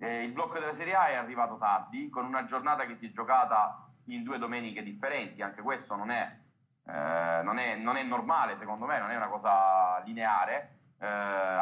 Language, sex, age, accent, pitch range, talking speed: Italian, male, 30-49, native, 105-135 Hz, 195 wpm